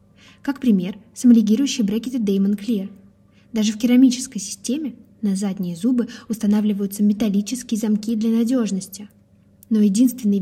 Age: 20-39